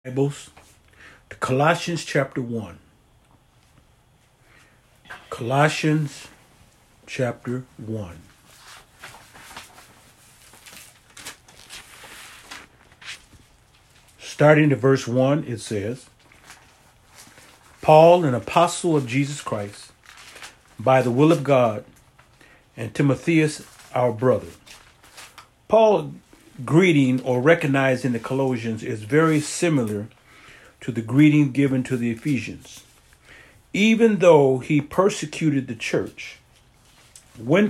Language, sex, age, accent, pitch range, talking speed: English, male, 50-69, American, 125-165 Hz, 85 wpm